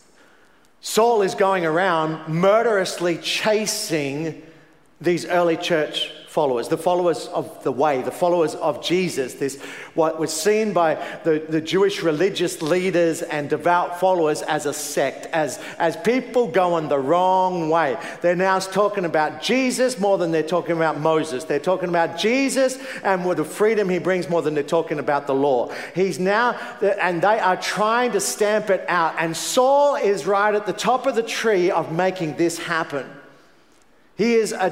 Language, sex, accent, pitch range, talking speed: English, male, Australian, 165-215 Hz, 170 wpm